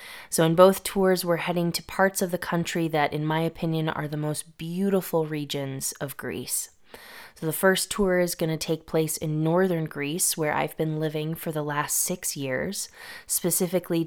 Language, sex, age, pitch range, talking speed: English, female, 20-39, 155-180 Hz, 190 wpm